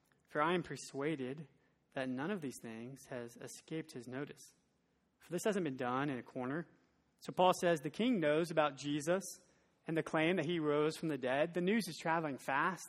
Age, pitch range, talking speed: 20-39, 130-165 Hz, 200 wpm